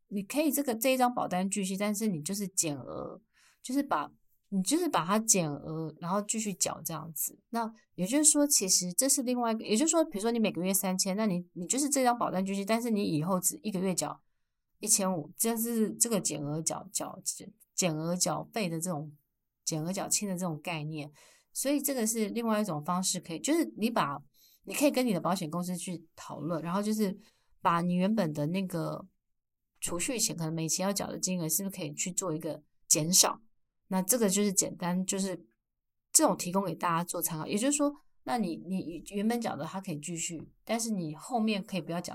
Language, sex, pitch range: Chinese, female, 170-220 Hz